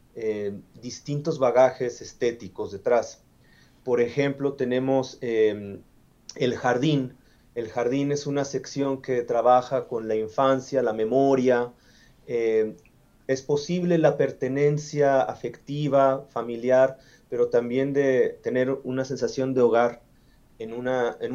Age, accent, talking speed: 30-49, Mexican, 115 wpm